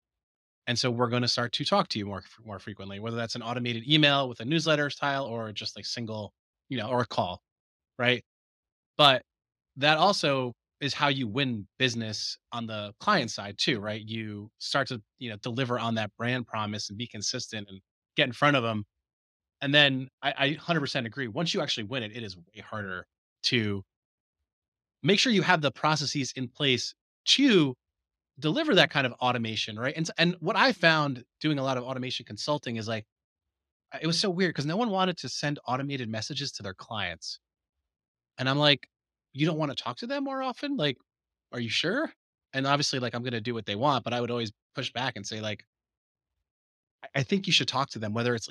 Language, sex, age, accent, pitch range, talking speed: English, male, 30-49, American, 110-145 Hz, 210 wpm